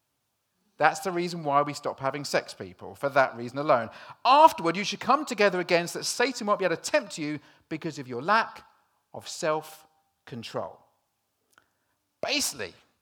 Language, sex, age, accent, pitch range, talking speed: English, male, 40-59, British, 170-245 Hz, 160 wpm